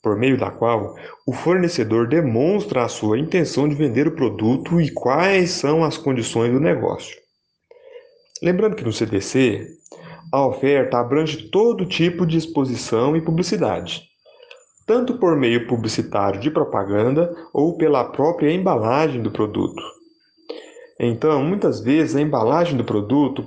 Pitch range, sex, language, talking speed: 125-180 Hz, male, Portuguese, 135 wpm